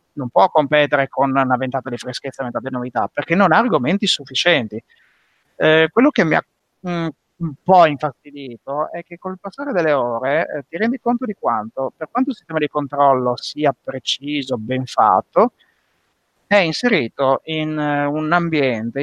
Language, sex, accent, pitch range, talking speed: Italian, male, native, 140-170 Hz, 165 wpm